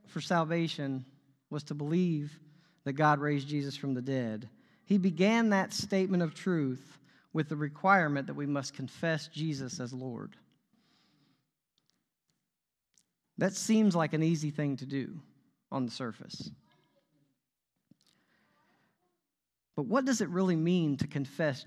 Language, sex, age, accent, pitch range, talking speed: English, male, 40-59, American, 135-185 Hz, 130 wpm